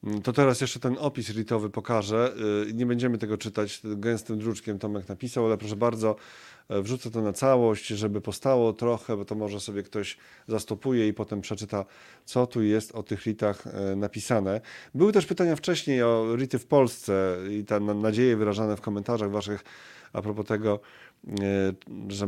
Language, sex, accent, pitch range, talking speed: Polish, male, native, 105-115 Hz, 160 wpm